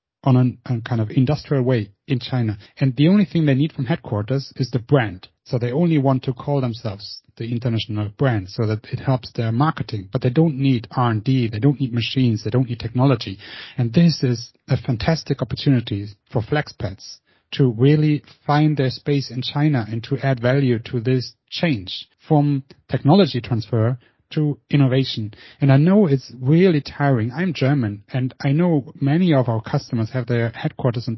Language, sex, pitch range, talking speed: English, male, 120-155 Hz, 180 wpm